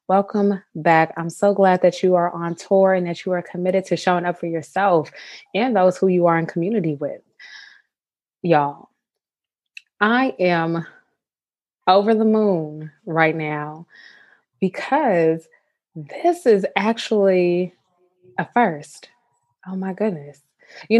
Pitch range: 175-245 Hz